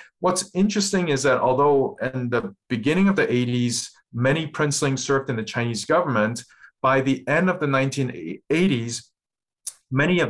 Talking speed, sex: 150 wpm, male